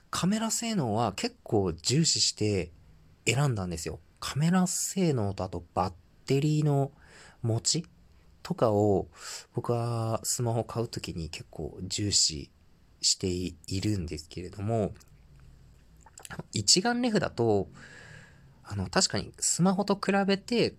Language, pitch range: Japanese, 90-130 Hz